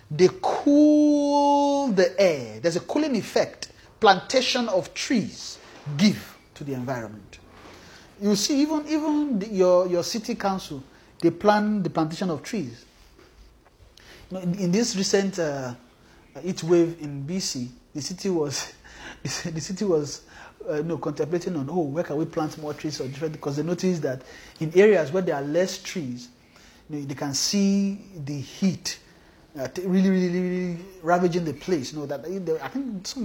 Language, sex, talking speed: English, male, 160 wpm